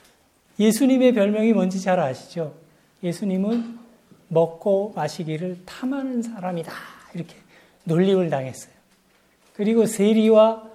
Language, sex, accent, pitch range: Korean, male, native, 185-240 Hz